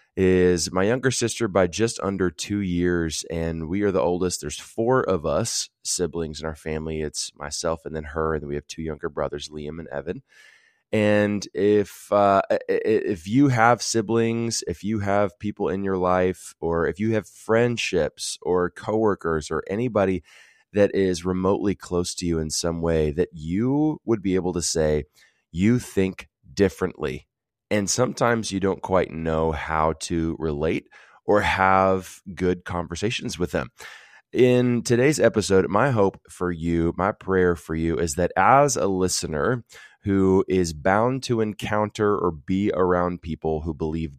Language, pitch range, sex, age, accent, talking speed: English, 85-115 Hz, male, 20-39, American, 165 wpm